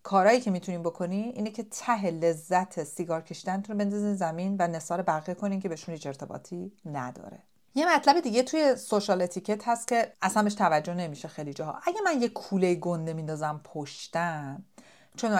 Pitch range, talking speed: 175-250 Hz, 170 wpm